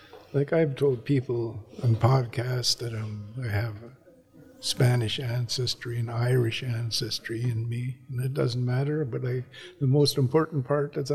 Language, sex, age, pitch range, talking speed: English, male, 60-79, 110-130 Hz, 140 wpm